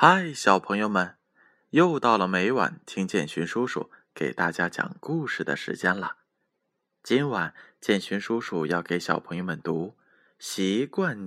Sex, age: male, 20-39